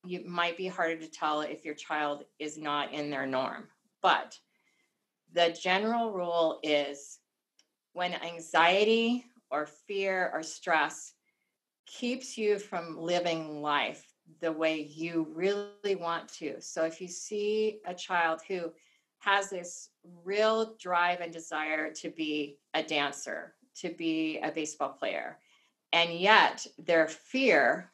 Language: English